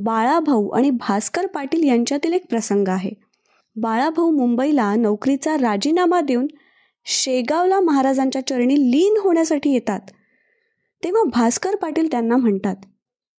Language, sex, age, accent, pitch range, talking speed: Marathi, female, 20-39, native, 230-325 Hz, 110 wpm